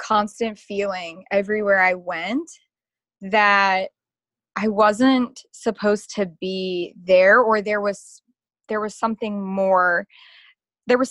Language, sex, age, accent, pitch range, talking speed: English, female, 20-39, American, 195-230 Hz, 115 wpm